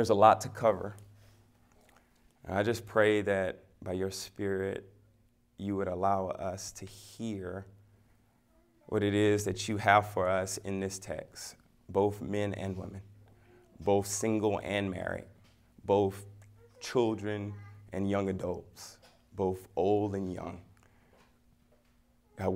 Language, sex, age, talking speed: English, male, 30-49, 130 wpm